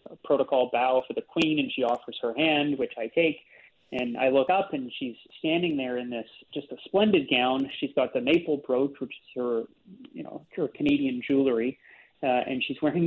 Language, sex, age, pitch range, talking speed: English, male, 30-49, 130-155 Hz, 200 wpm